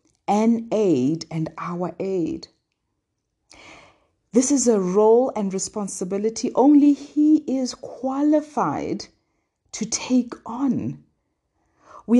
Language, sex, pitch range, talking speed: English, female, 210-280 Hz, 95 wpm